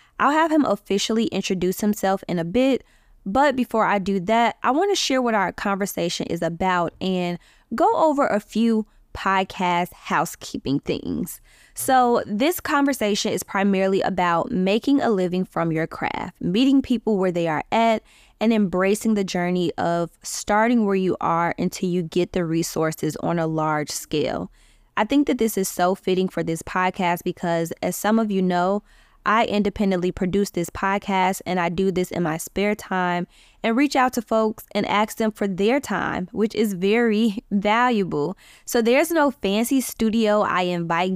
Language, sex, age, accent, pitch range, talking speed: English, female, 20-39, American, 180-220 Hz, 170 wpm